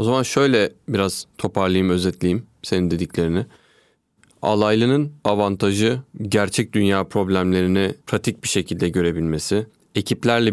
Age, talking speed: 30-49, 105 wpm